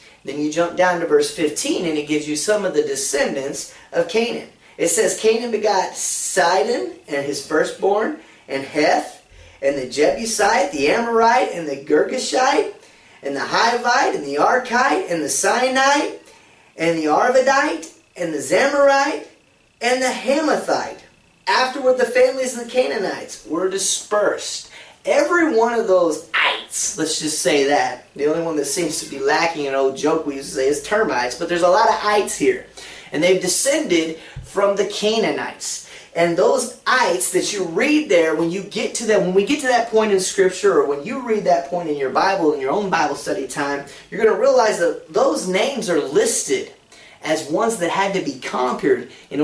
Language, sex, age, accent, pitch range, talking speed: English, male, 30-49, American, 160-265 Hz, 185 wpm